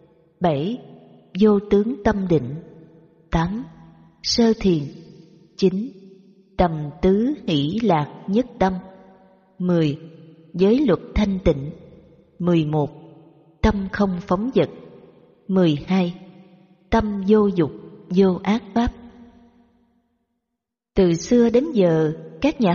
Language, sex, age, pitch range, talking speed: Vietnamese, female, 20-39, 165-215 Hz, 100 wpm